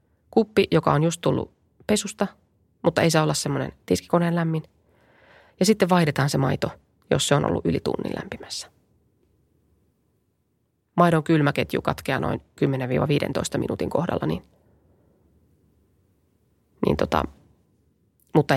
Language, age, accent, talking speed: Finnish, 20-39, native, 115 wpm